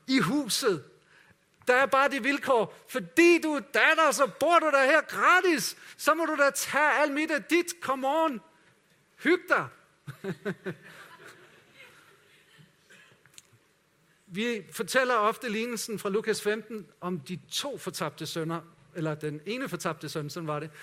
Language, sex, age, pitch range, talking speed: Danish, male, 50-69, 160-215 Hz, 140 wpm